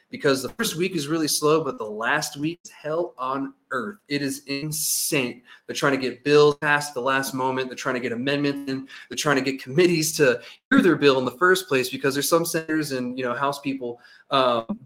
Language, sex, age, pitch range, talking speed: English, male, 20-39, 130-150 Hz, 230 wpm